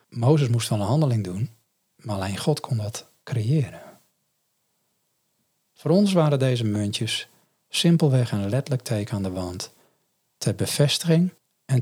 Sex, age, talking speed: male, 40-59, 135 wpm